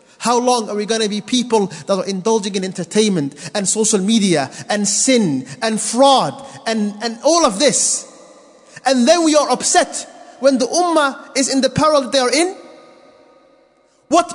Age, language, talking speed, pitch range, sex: 30-49, English, 175 wpm, 165-245 Hz, male